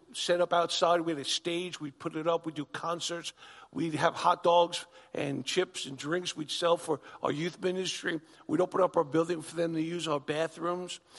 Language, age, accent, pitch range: English, 50-69, American, 155-190 Hz